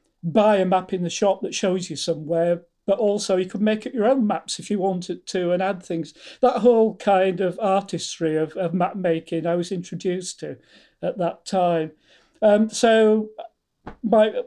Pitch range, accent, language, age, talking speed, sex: 170-205 Hz, British, English, 40-59, 185 wpm, male